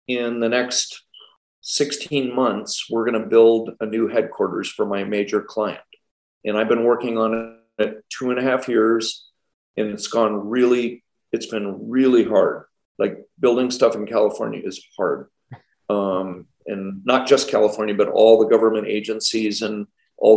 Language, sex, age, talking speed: English, male, 40-59, 160 wpm